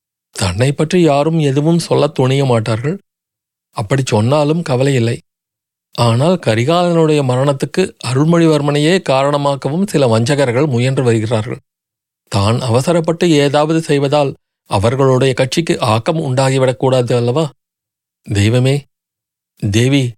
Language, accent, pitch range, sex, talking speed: Tamil, native, 120-150 Hz, male, 90 wpm